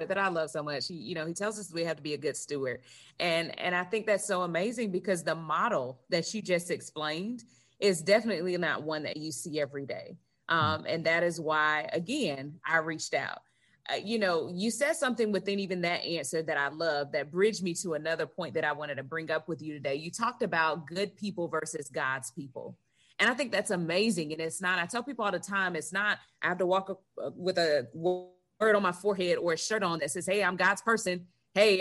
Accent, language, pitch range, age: American, English, 165-205 Hz, 30-49